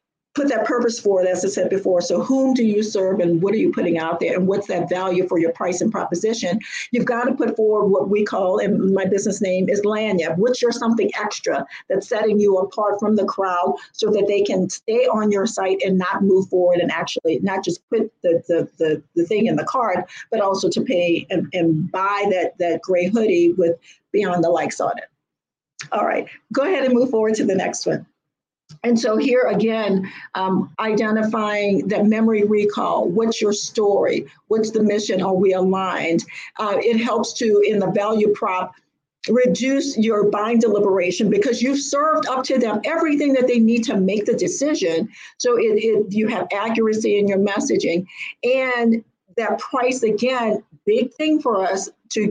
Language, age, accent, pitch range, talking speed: English, 50-69, American, 190-230 Hz, 195 wpm